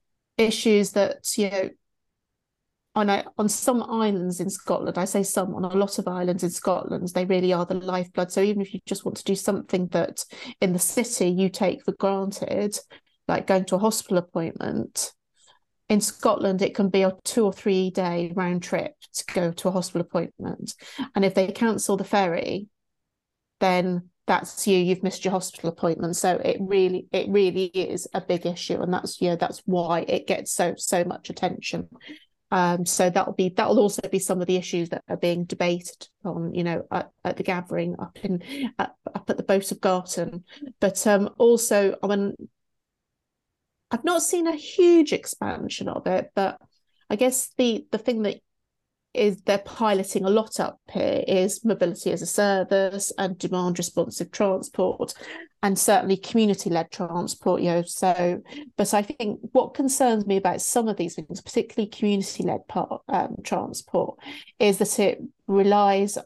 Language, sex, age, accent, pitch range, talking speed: English, female, 30-49, British, 180-210 Hz, 175 wpm